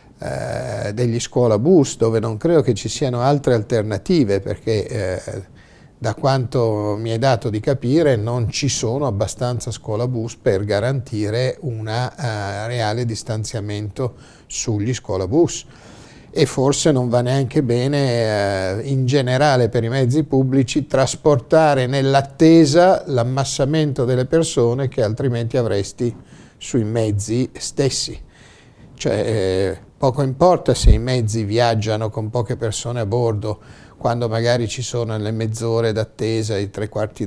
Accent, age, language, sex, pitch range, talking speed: native, 50-69, Italian, male, 110-130 Hz, 130 wpm